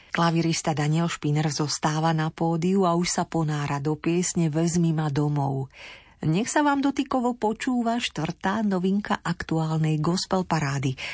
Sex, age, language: female, 40-59, Slovak